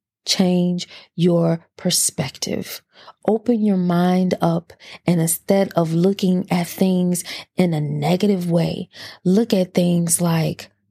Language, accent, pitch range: English, American, 165-215 Hz